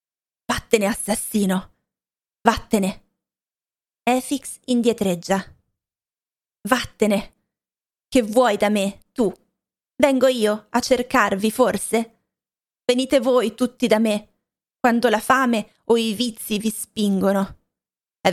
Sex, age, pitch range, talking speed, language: female, 30-49, 195-235 Hz, 100 wpm, Italian